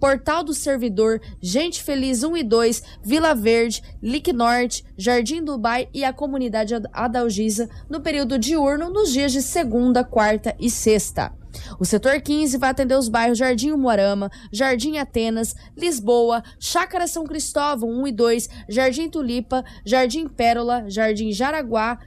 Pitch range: 230-285 Hz